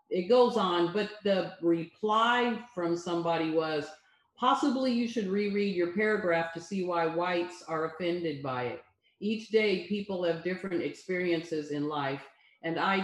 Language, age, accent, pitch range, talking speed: English, 50-69, American, 165-205 Hz, 150 wpm